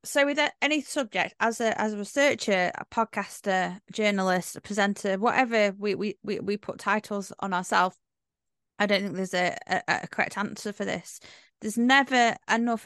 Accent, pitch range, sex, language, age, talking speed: British, 200-250 Hz, female, English, 20-39, 170 wpm